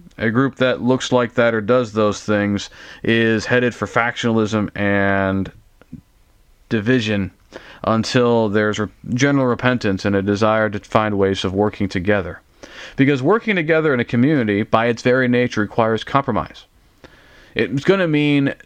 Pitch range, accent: 100-125 Hz, American